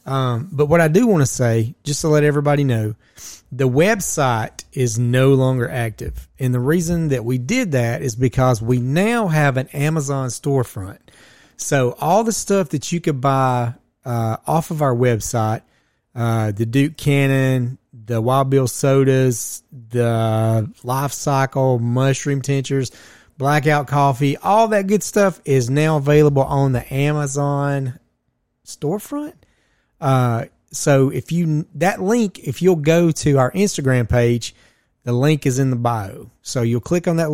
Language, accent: English, American